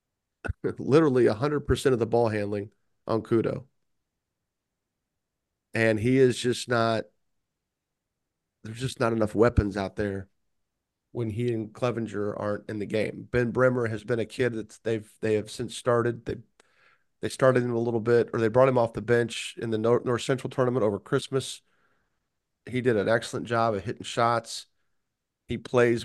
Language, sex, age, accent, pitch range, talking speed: English, male, 40-59, American, 110-130 Hz, 170 wpm